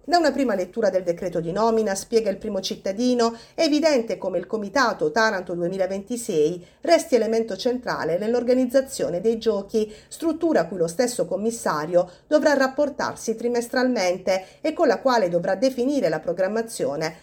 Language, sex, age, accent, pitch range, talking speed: Italian, female, 40-59, native, 195-265 Hz, 145 wpm